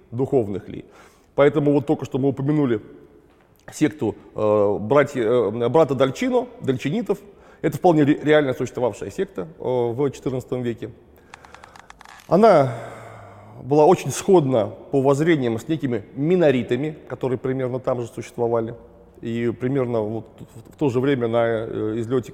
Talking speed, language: 125 wpm, Russian